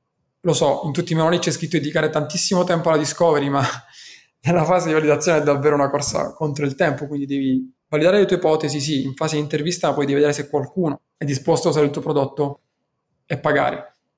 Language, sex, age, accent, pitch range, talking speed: Italian, male, 20-39, native, 140-170 Hz, 215 wpm